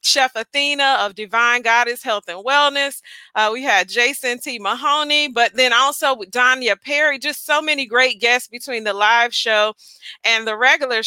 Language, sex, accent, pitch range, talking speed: English, female, American, 225-270 Hz, 175 wpm